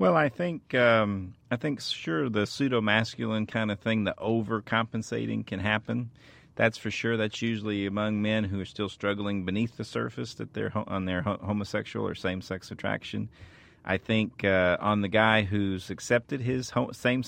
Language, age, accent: English, 40-59, American